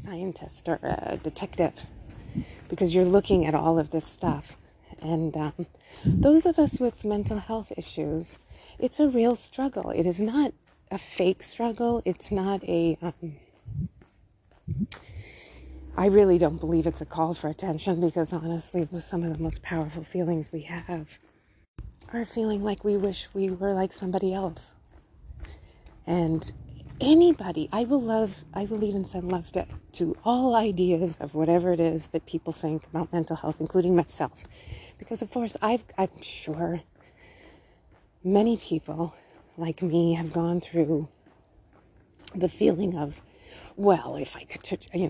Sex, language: female, English